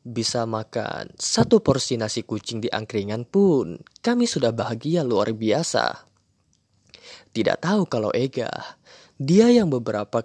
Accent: native